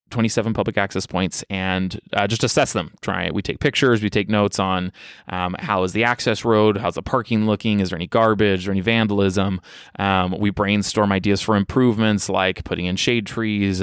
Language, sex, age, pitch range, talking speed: English, male, 20-39, 95-110 Hz, 195 wpm